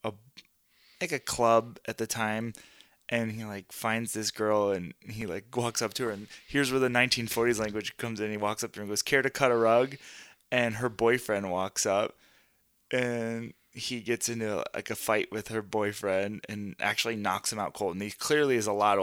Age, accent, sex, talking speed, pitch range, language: 20-39, American, male, 210 wpm, 105-125 Hz, English